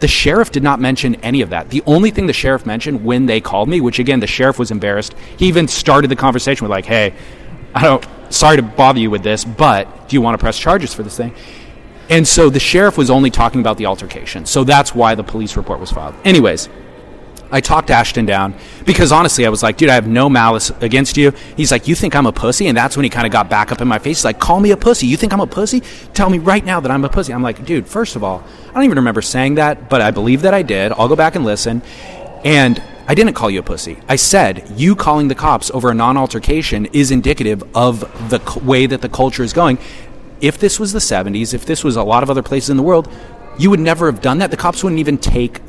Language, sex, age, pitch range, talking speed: English, male, 30-49, 115-155 Hz, 260 wpm